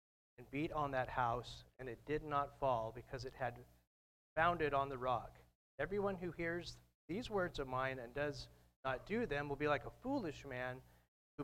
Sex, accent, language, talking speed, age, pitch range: male, American, English, 190 wpm, 40-59, 105-150 Hz